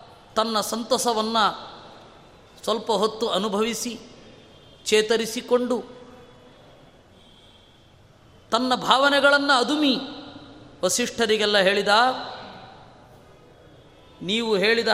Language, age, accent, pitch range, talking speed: Kannada, 20-39, native, 205-230 Hz, 50 wpm